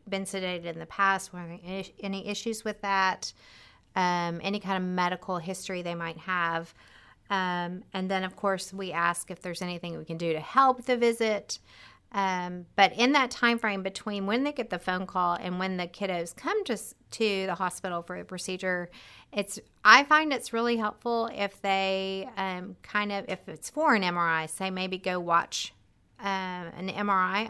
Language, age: English, 30-49